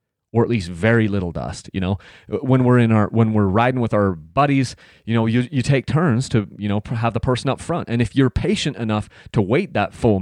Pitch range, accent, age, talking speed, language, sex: 105-135 Hz, American, 30-49, 240 wpm, English, male